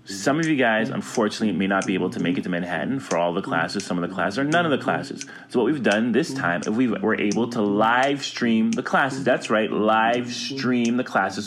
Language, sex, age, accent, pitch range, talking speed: English, male, 30-49, American, 105-160 Hz, 245 wpm